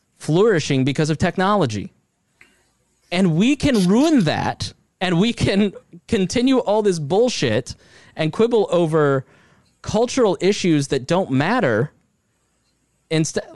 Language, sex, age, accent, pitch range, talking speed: English, male, 20-39, American, 120-165 Hz, 110 wpm